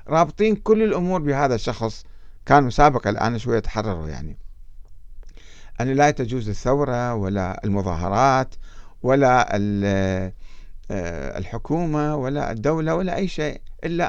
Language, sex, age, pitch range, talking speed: Arabic, male, 50-69, 105-150 Hz, 105 wpm